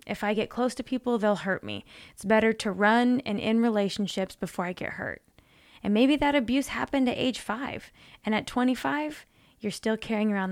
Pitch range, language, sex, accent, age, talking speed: 195-240 Hz, English, female, American, 20-39, 200 wpm